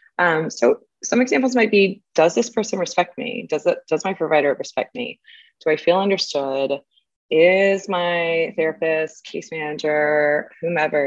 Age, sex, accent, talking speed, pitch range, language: 20-39, female, American, 150 wpm, 135-195 Hz, English